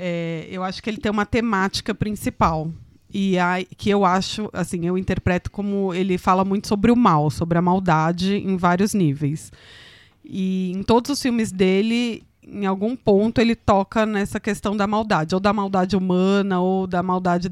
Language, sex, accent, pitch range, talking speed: Portuguese, female, Brazilian, 175-220 Hz, 180 wpm